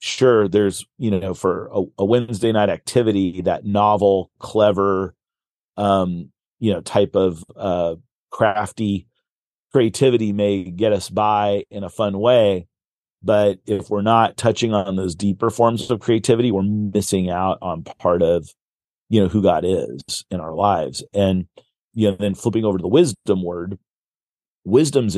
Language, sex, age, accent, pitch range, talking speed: English, male, 40-59, American, 95-110 Hz, 155 wpm